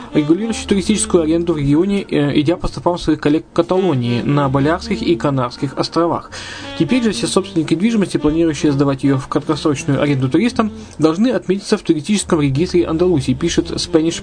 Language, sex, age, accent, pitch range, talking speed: Russian, male, 20-39, native, 140-175 Hz, 155 wpm